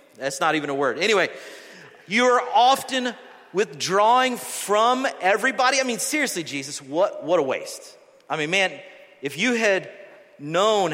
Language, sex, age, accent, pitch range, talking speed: English, male, 40-59, American, 175-250 Hz, 150 wpm